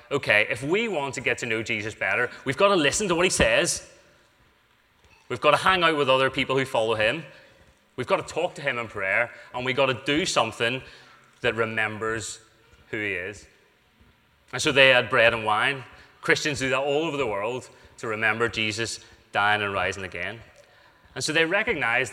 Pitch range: 115-145 Hz